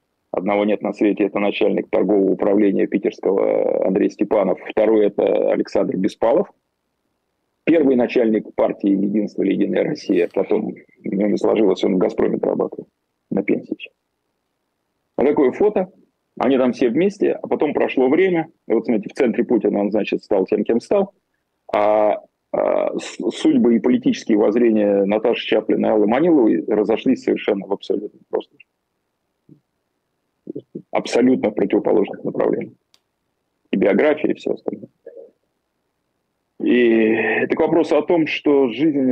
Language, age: Russian, 30-49